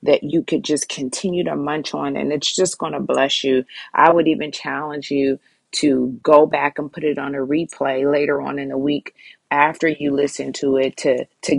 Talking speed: 210 wpm